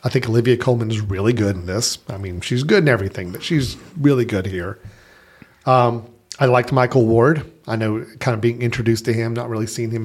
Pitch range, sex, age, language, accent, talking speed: 110-140 Hz, male, 40-59, English, American, 220 wpm